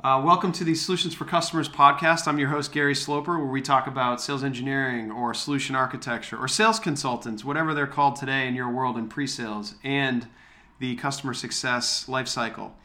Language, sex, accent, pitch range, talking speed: English, male, American, 120-140 Hz, 180 wpm